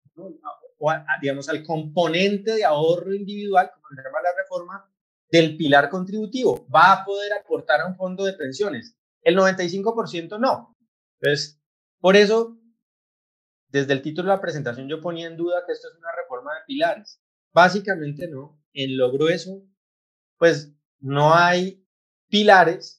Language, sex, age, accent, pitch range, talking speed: Spanish, male, 30-49, Colombian, 140-185 Hz, 150 wpm